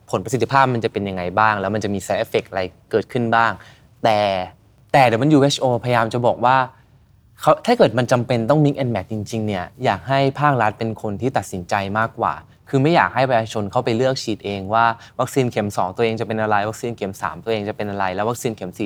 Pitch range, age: 100-125 Hz, 20-39